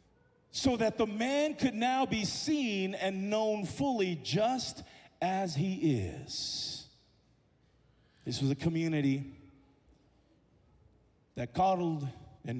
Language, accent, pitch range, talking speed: English, American, 150-225 Hz, 105 wpm